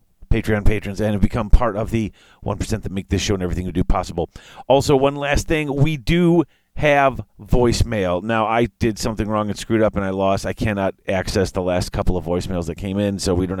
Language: English